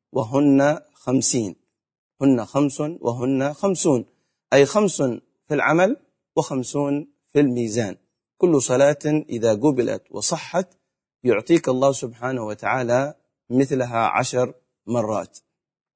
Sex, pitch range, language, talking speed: male, 120-150 Hz, Arabic, 95 wpm